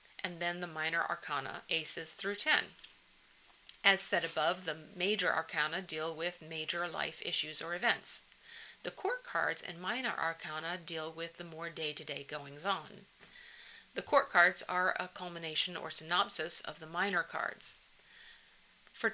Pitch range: 160-195 Hz